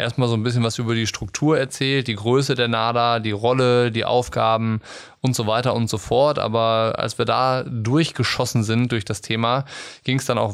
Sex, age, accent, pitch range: male, 20-39, German, 115-130 Hz